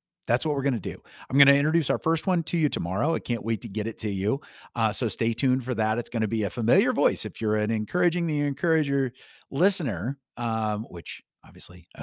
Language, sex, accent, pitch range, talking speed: English, male, American, 105-145 Hz, 240 wpm